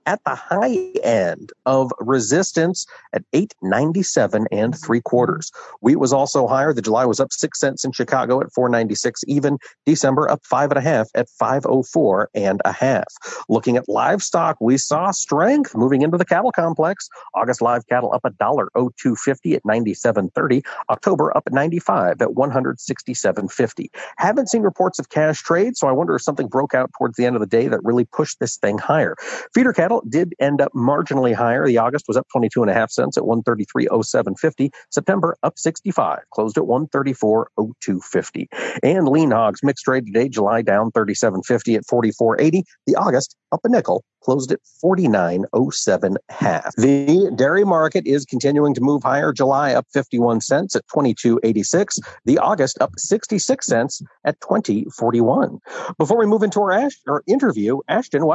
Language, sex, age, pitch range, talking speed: English, male, 50-69, 120-175 Hz, 210 wpm